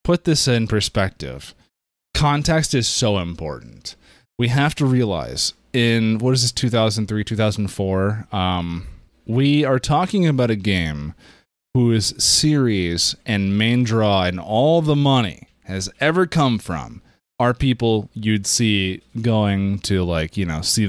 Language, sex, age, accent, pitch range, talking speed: English, male, 20-39, American, 95-125 Hz, 140 wpm